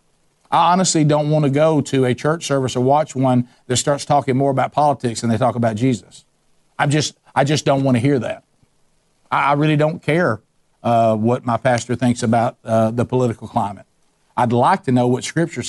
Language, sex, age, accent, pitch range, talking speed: English, male, 50-69, American, 125-150 Hz, 205 wpm